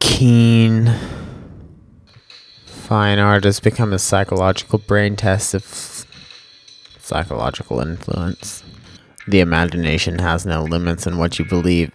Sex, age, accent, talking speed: male, 20-39, American, 105 wpm